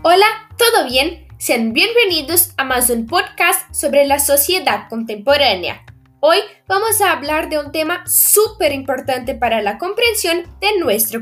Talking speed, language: 145 wpm, Spanish